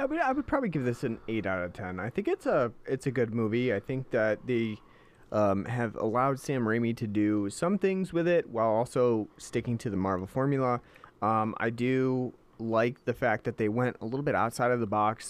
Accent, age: American, 30-49